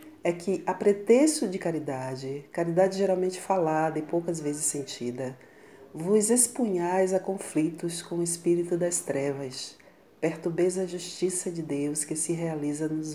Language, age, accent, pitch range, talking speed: Portuguese, 40-59, Brazilian, 155-190 Hz, 140 wpm